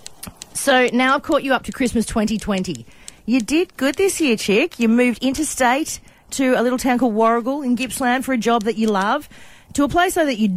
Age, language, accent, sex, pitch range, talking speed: 40-59, English, Australian, female, 185-260 Hz, 215 wpm